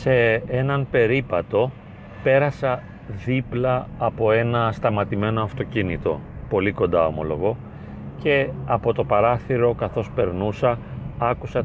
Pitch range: 100-120 Hz